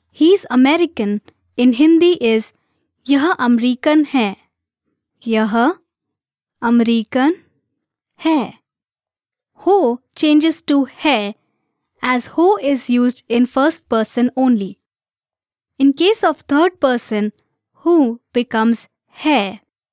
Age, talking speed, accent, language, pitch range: 20-39, 95 wpm, Indian, English, 215-320 Hz